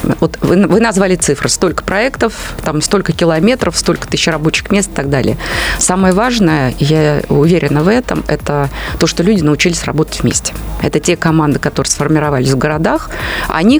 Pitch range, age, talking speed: 150-185 Hz, 30-49, 155 wpm